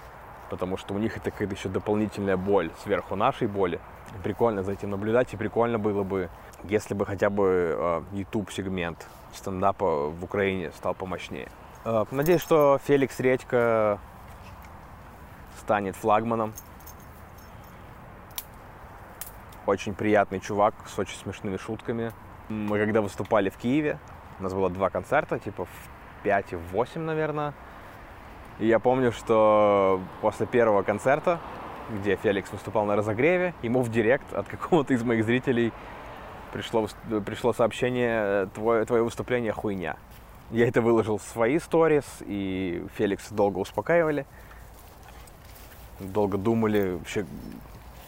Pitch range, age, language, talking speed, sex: 95-115 Hz, 20-39, Russian, 125 wpm, male